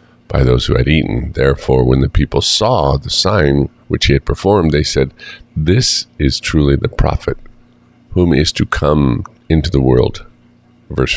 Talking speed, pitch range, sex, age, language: 165 wpm, 65-85 Hz, male, 50-69, English